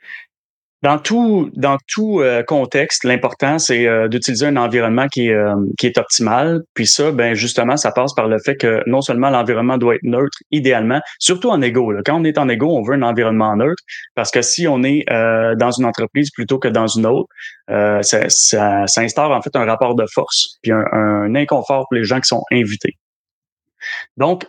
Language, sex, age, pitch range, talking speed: French, male, 30-49, 115-140 Hz, 205 wpm